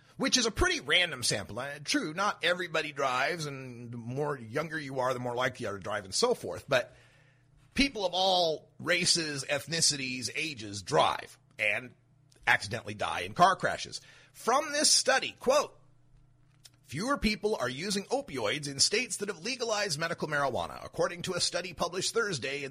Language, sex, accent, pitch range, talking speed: English, male, American, 135-215 Hz, 170 wpm